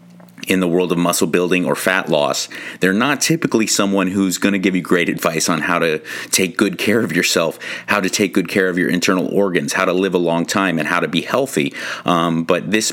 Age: 40-59